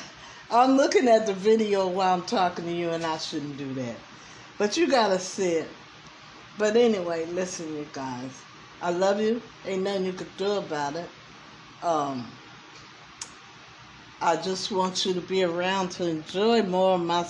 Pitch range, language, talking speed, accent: 165-220 Hz, English, 170 wpm, American